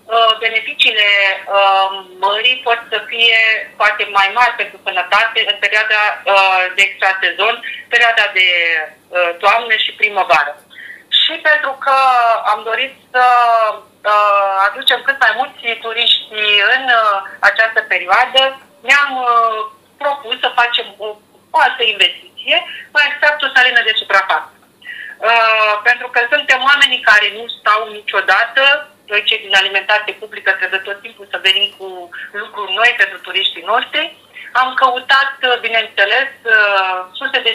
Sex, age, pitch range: female, 30-49, 200-255 Hz